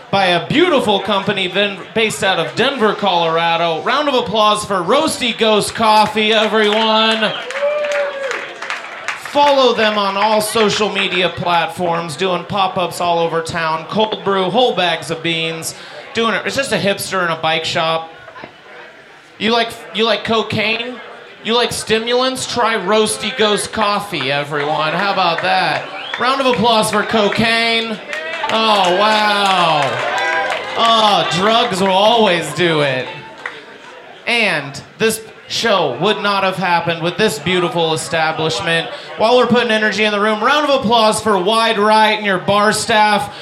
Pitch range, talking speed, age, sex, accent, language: 175-220 Hz, 140 wpm, 30-49, male, American, English